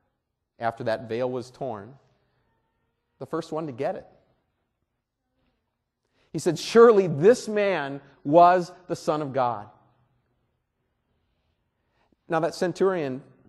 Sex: male